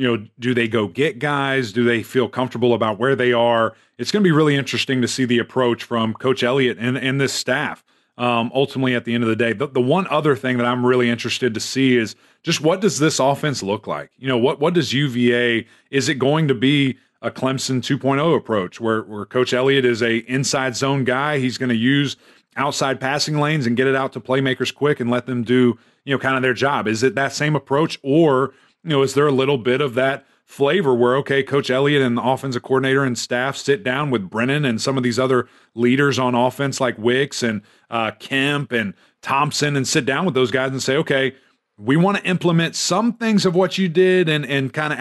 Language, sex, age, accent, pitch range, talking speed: English, male, 30-49, American, 120-145 Hz, 230 wpm